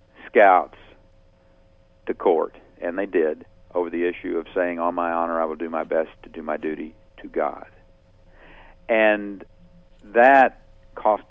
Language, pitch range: English, 90-110 Hz